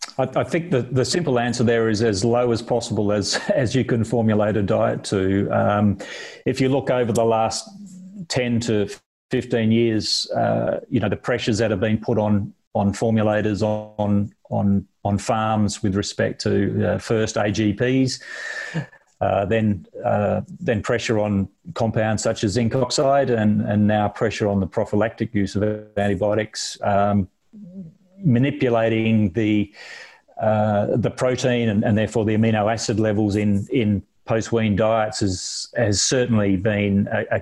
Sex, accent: male, Australian